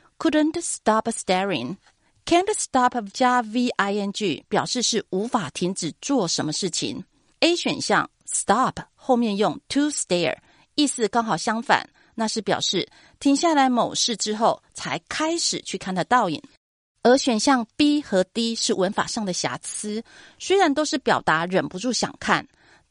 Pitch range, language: 185-255 Hz, Chinese